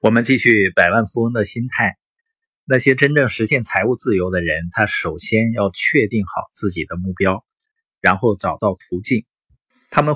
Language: Chinese